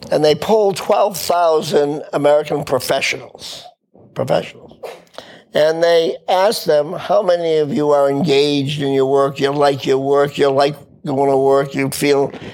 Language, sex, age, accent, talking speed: English, male, 50-69, American, 150 wpm